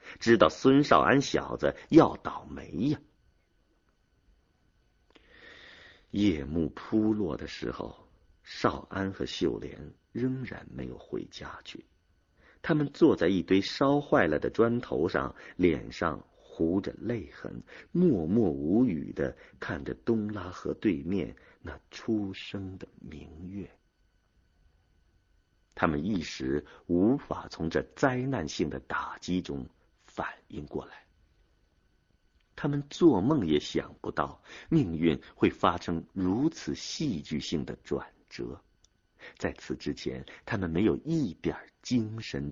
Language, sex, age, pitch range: Chinese, male, 50-69, 80-115 Hz